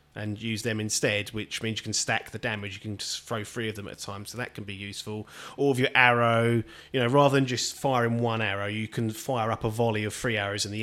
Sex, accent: male, British